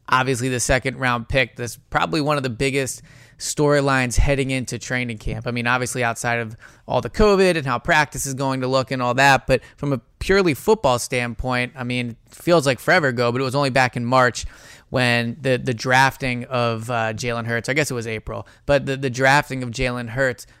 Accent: American